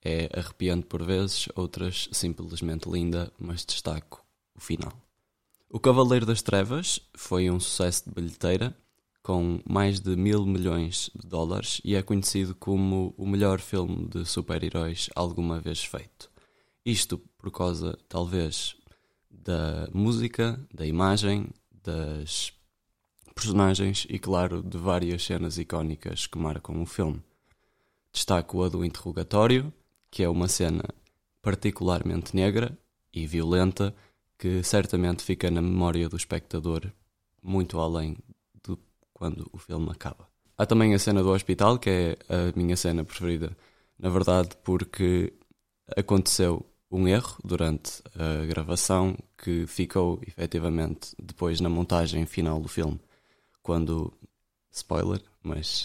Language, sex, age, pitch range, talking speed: Portuguese, male, 20-39, 85-100 Hz, 125 wpm